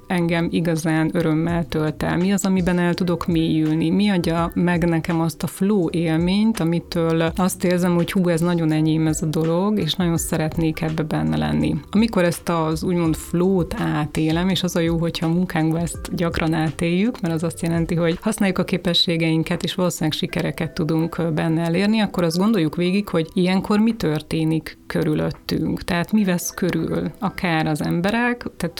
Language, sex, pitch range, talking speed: Hungarian, female, 160-185 Hz, 170 wpm